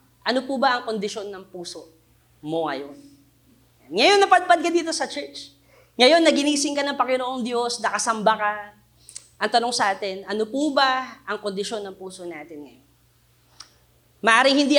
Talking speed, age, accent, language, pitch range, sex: 155 wpm, 30-49, native, Filipino, 205-265 Hz, female